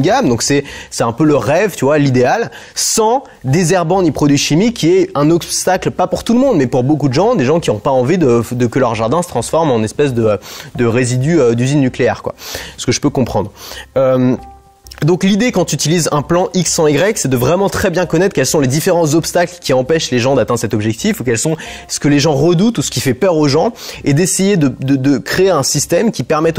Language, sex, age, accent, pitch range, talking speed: French, male, 20-39, French, 130-180 Hz, 250 wpm